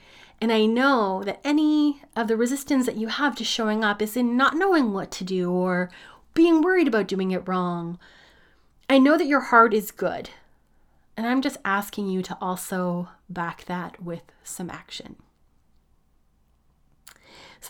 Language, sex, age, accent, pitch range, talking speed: English, female, 30-49, American, 180-225 Hz, 165 wpm